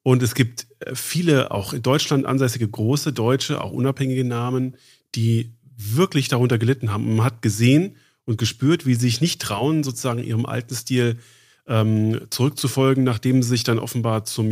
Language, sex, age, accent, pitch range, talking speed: German, male, 40-59, German, 115-135 Hz, 165 wpm